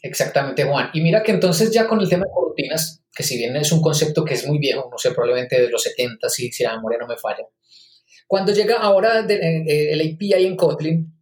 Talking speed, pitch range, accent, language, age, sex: 225 wpm, 150-185 Hz, Colombian, Spanish, 20-39, male